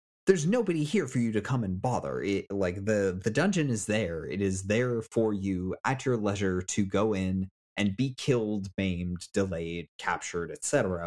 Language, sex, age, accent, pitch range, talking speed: English, male, 30-49, American, 95-115 Hz, 185 wpm